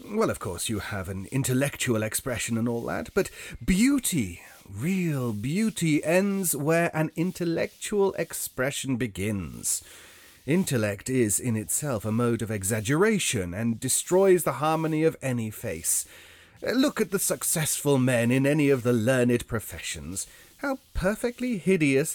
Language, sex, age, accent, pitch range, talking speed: English, male, 30-49, British, 110-155 Hz, 135 wpm